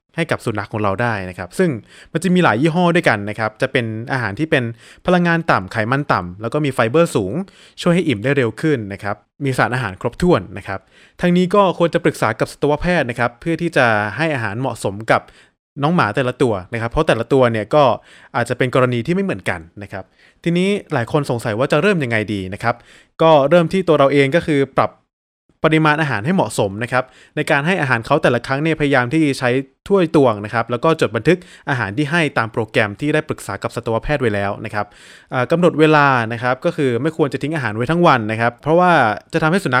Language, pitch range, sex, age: English, 115-160 Hz, male, 20-39